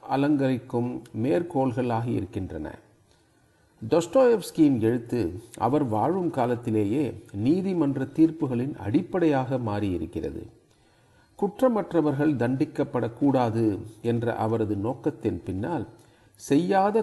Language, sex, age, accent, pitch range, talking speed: Tamil, male, 40-59, native, 115-150 Hz, 65 wpm